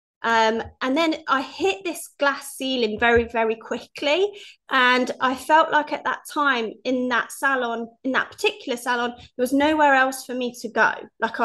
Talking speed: 180 wpm